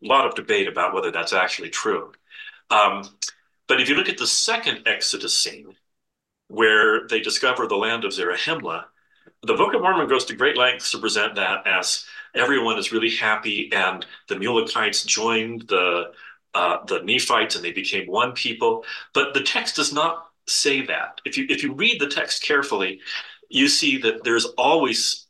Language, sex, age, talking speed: English, male, 40-59, 180 wpm